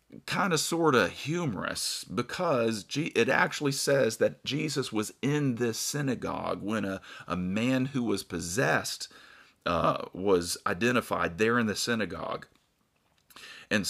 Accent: American